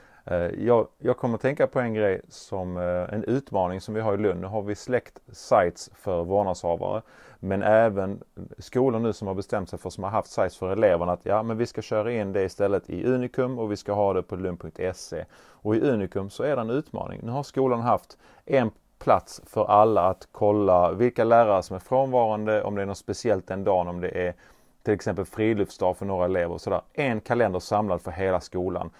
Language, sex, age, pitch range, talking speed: Swedish, male, 30-49, 95-115 Hz, 210 wpm